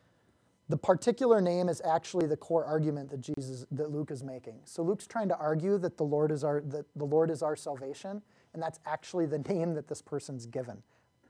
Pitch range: 145-175 Hz